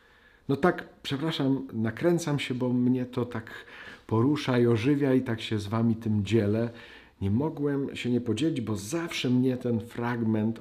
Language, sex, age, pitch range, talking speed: Polish, male, 50-69, 90-125 Hz, 165 wpm